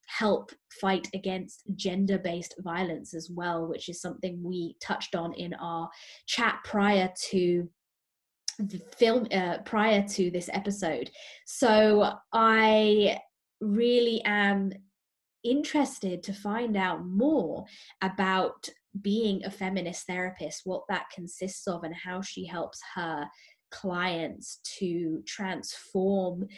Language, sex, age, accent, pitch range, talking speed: English, female, 20-39, British, 170-200 Hz, 115 wpm